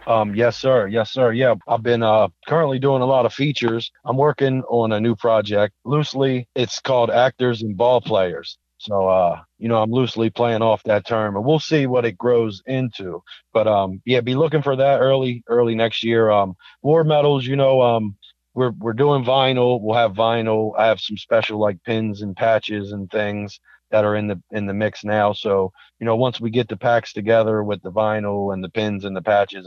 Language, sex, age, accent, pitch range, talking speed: English, male, 40-59, American, 105-120 Hz, 210 wpm